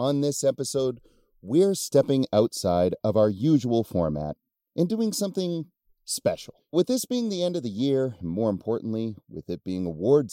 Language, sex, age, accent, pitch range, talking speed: English, male, 40-59, American, 100-150 Hz, 170 wpm